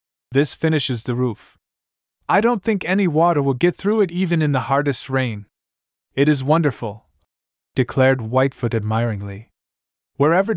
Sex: male